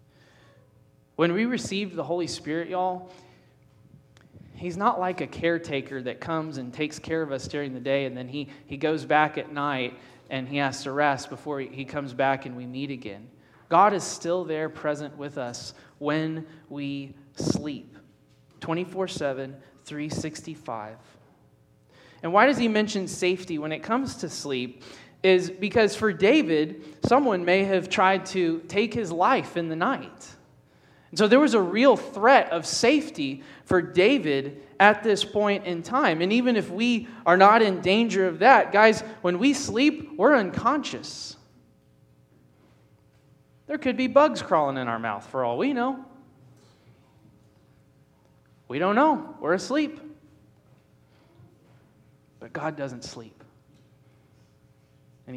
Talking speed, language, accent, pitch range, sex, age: 145 wpm, English, American, 135-200 Hz, male, 20-39